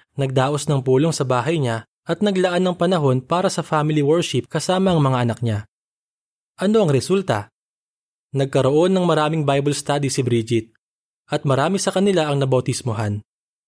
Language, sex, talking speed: Filipino, male, 155 wpm